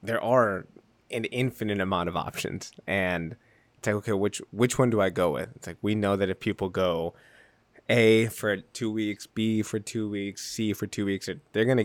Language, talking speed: English, 210 wpm